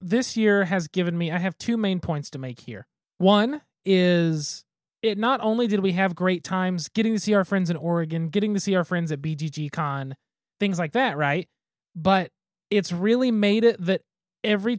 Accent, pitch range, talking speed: American, 175-215 Hz, 200 wpm